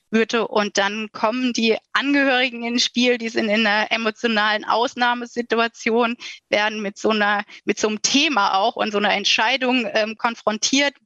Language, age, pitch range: German, 20-39, 205-240 Hz